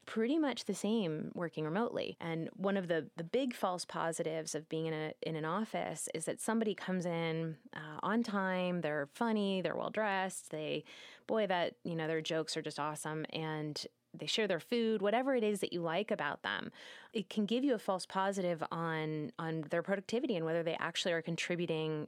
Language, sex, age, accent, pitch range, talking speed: English, female, 20-39, American, 160-205 Hz, 195 wpm